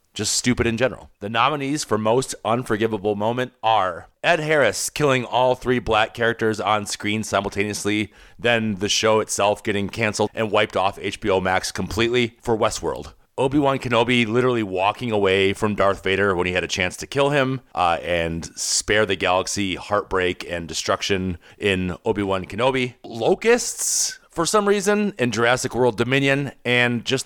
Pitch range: 95-125 Hz